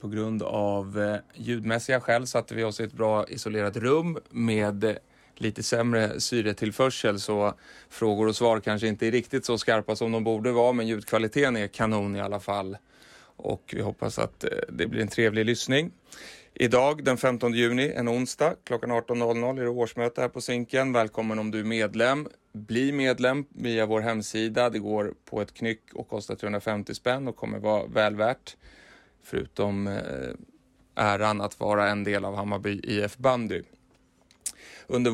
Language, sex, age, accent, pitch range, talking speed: Swedish, male, 30-49, native, 105-120 Hz, 165 wpm